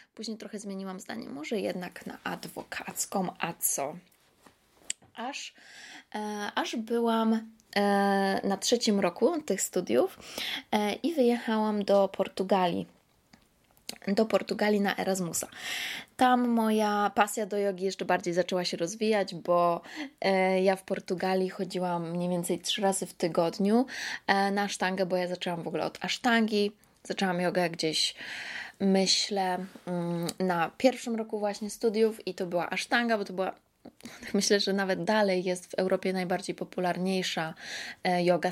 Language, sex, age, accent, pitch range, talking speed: Polish, female, 20-39, native, 185-225 Hz, 130 wpm